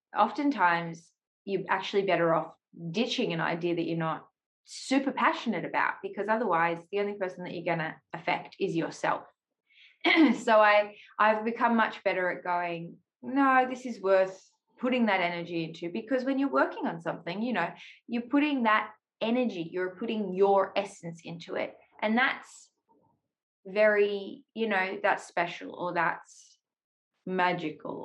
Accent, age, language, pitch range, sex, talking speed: Australian, 20-39, English, 175-225 Hz, female, 150 wpm